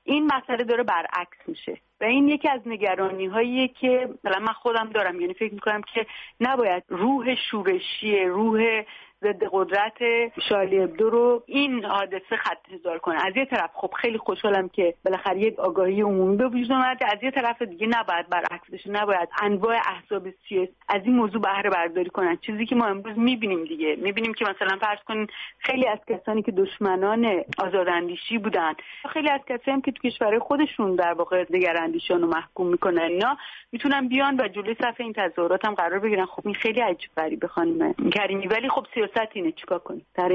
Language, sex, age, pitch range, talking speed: Persian, female, 40-59, 185-230 Hz, 165 wpm